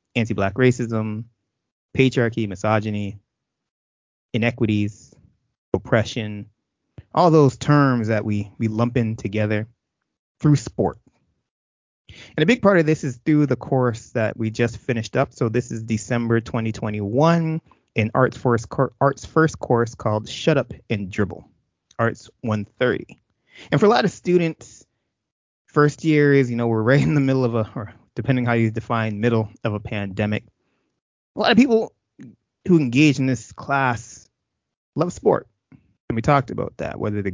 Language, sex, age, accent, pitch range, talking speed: English, male, 20-39, American, 110-135 Hz, 155 wpm